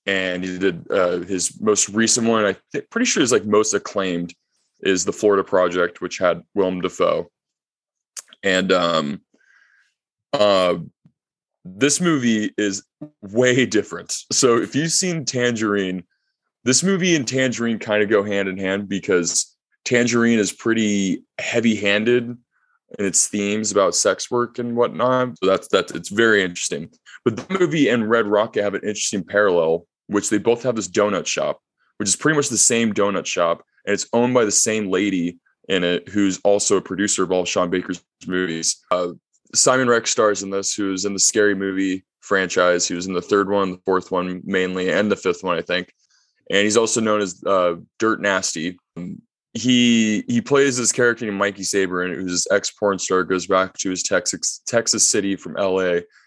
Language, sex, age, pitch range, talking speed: English, male, 20-39, 95-120 Hz, 175 wpm